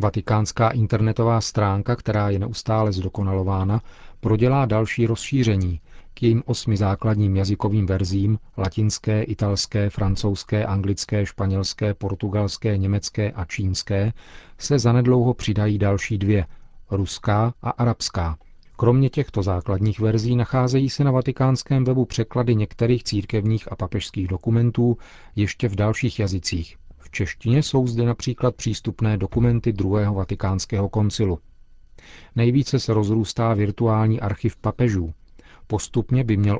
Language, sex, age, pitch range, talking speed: Czech, male, 40-59, 100-115 Hz, 115 wpm